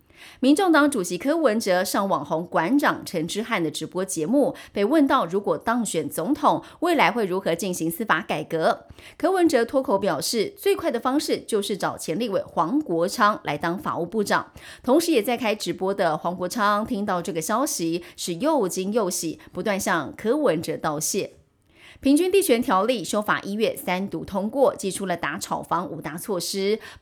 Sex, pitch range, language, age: female, 180-265 Hz, Chinese, 30-49